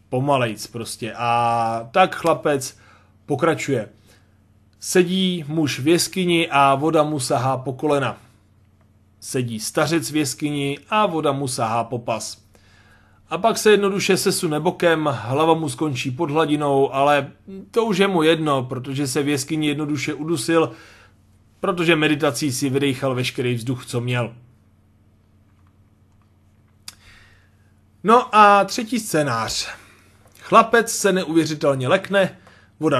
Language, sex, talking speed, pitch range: Czech, male, 120 wpm, 115-165 Hz